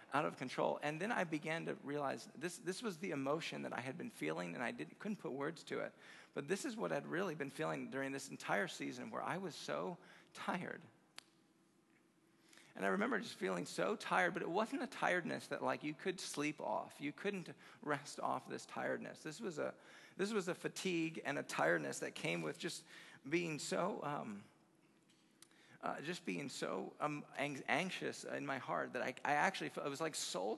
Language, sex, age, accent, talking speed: English, male, 40-59, American, 205 wpm